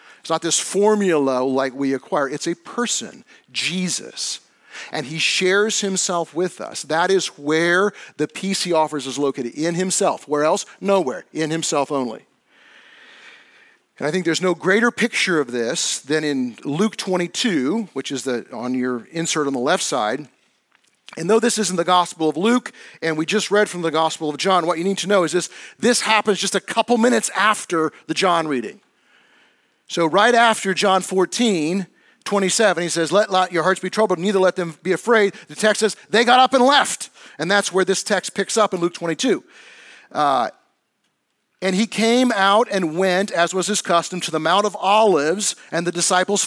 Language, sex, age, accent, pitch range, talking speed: English, male, 40-59, American, 160-210 Hz, 190 wpm